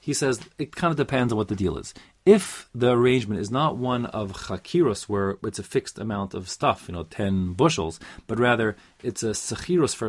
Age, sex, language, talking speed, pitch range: 30-49, male, English, 215 wpm, 100-135 Hz